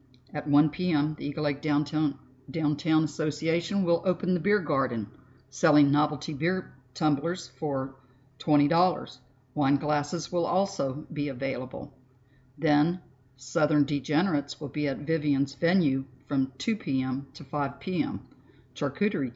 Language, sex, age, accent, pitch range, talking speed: English, female, 50-69, American, 135-155 Hz, 125 wpm